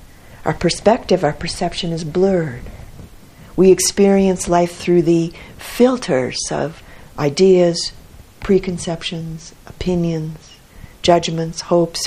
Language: English